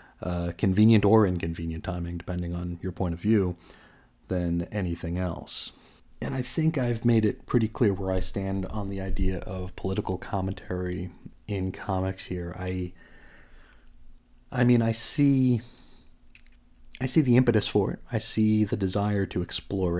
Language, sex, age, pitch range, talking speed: English, male, 40-59, 90-105 Hz, 155 wpm